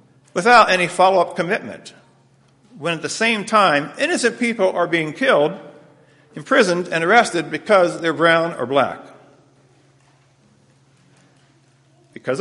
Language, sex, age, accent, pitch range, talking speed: English, male, 50-69, American, 135-175 Hz, 110 wpm